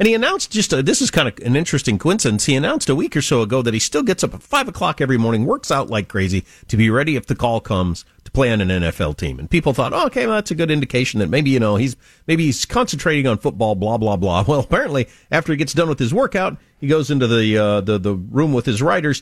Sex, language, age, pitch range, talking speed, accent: male, English, 40-59, 105-150 Hz, 280 wpm, American